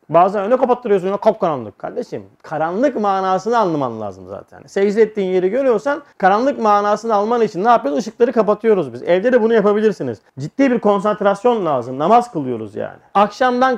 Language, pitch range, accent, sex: Turkish, 195-255 Hz, native, male